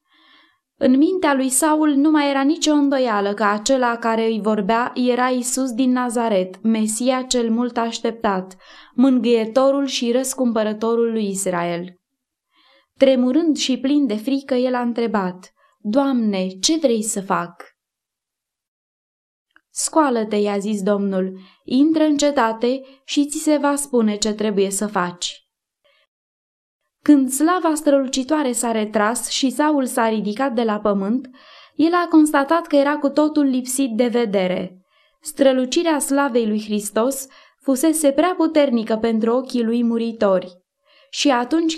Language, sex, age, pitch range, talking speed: Romanian, female, 20-39, 225-285 Hz, 130 wpm